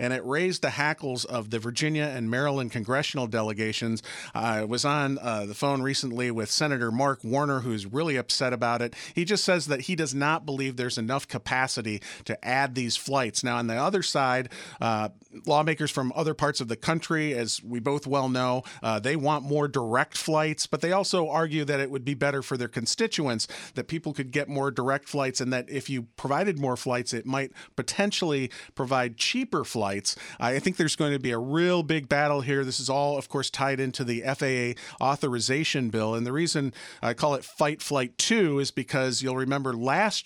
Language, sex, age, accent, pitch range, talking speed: English, male, 40-59, American, 120-145 Hz, 205 wpm